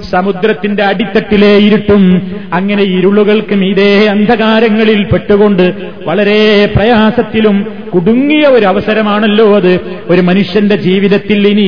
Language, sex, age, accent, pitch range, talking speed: Malayalam, male, 30-49, native, 200-215 Hz, 90 wpm